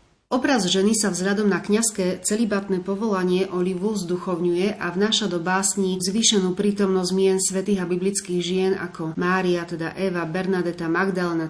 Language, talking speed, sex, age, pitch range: Slovak, 140 wpm, female, 30-49, 175-205 Hz